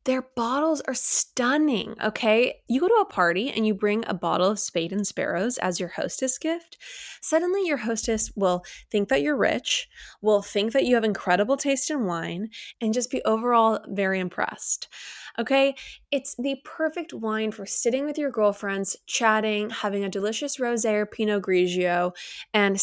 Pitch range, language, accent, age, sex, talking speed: 195-260 Hz, English, American, 20-39, female, 170 wpm